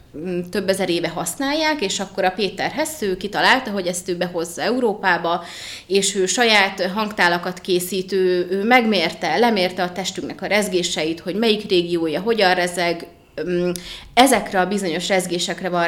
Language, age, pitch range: Hungarian, 30-49, 175-205 Hz